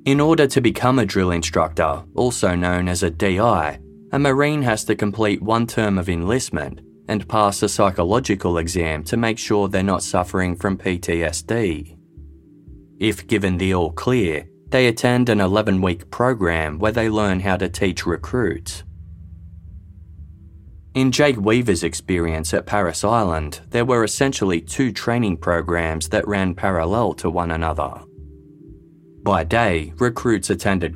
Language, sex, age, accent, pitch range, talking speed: English, male, 20-39, Australian, 85-110 Hz, 140 wpm